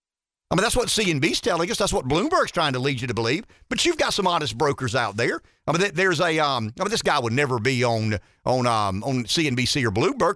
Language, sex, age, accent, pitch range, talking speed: English, male, 50-69, American, 125-175 Hz, 250 wpm